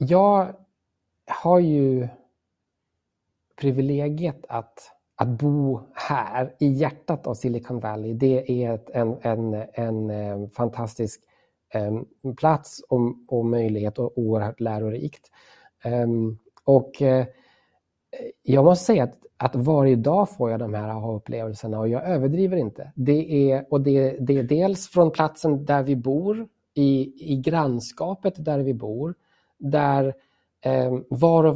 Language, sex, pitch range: Swedish, male, 120-155 Hz